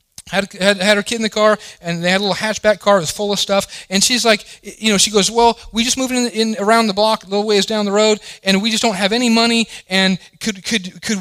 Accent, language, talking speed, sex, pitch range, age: American, English, 285 wpm, male, 175-225 Hz, 30-49